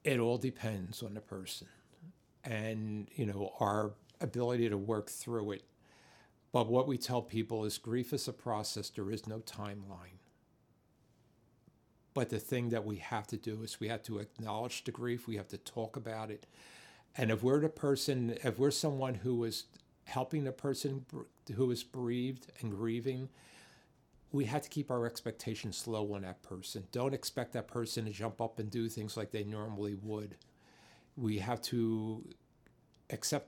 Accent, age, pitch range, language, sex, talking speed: American, 50-69, 105-125 Hz, English, male, 170 wpm